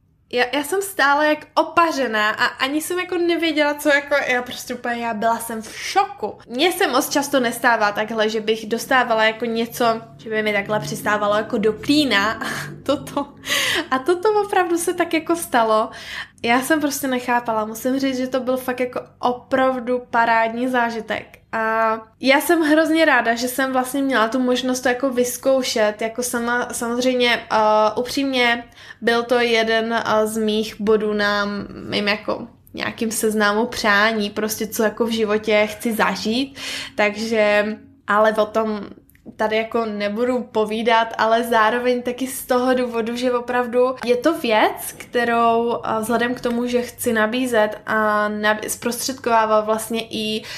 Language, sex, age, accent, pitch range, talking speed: Czech, female, 10-29, native, 220-260 Hz, 155 wpm